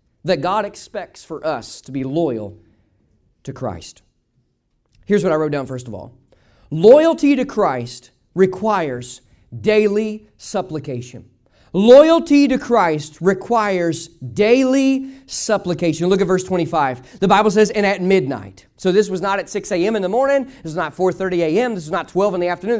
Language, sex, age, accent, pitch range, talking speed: English, male, 40-59, American, 170-250 Hz, 165 wpm